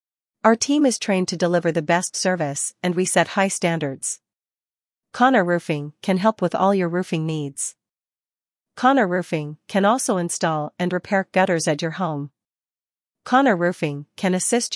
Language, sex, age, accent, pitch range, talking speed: English, female, 40-59, American, 160-195 Hz, 155 wpm